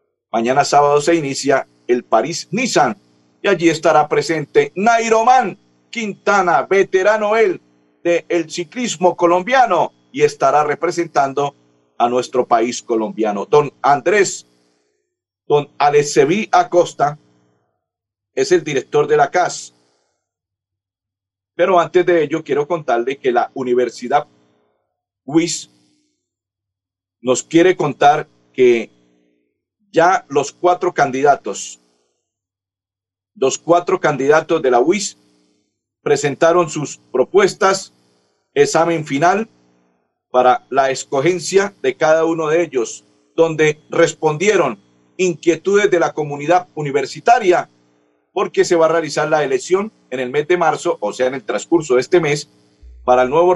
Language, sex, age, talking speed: Spanish, male, 50-69, 120 wpm